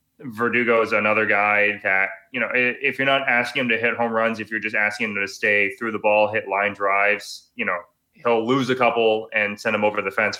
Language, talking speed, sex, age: English, 235 wpm, male, 20-39